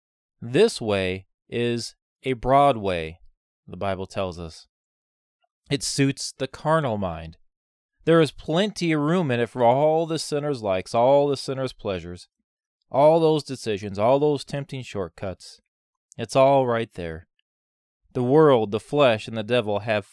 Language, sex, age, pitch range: English, male, 30-49, 105-150 Hz